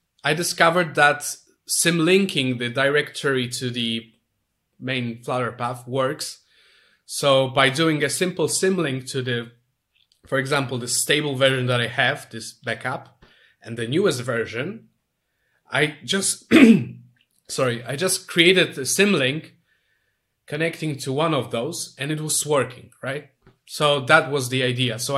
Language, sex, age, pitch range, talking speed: English, male, 30-49, 120-150 Hz, 145 wpm